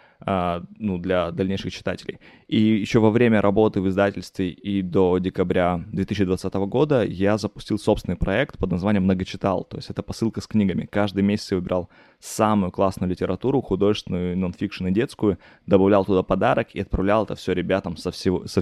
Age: 20-39